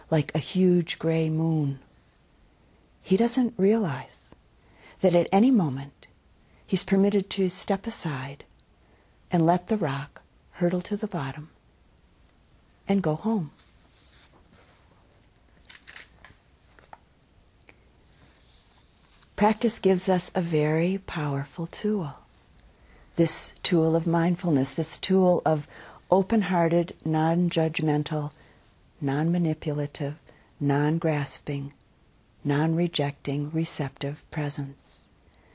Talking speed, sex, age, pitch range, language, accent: 85 wpm, female, 50-69, 140-185 Hz, English, American